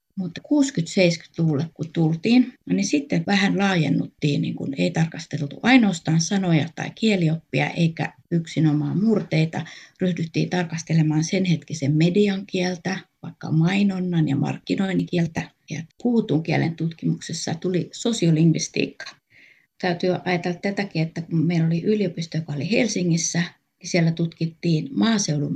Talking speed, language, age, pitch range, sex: 115 wpm, Finnish, 30-49, 155-180 Hz, female